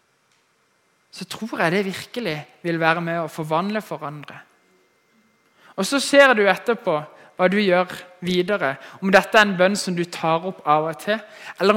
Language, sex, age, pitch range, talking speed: English, male, 20-39, 160-205 Hz, 170 wpm